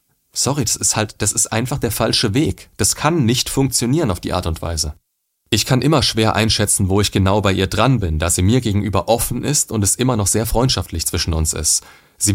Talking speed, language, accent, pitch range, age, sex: 230 wpm, German, German, 95-125 Hz, 30-49, male